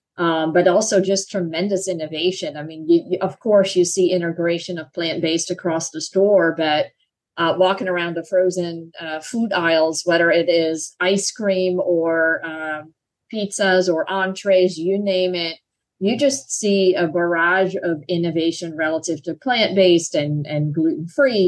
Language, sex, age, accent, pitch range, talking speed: English, female, 40-59, American, 165-190 Hz, 150 wpm